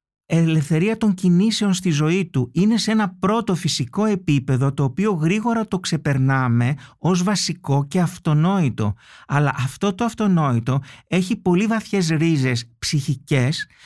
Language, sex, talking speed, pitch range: Greek, male, 130 wpm, 140-185 Hz